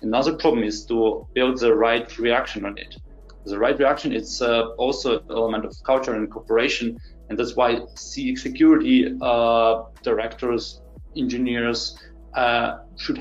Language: English